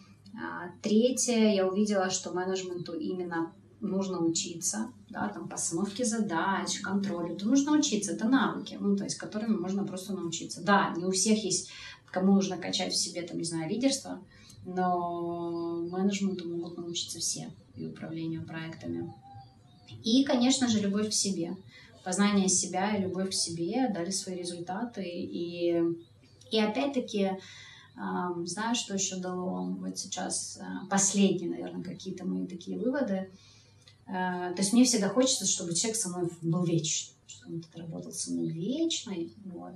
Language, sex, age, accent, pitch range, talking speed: Russian, female, 30-49, native, 170-200 Hz, 145 wpm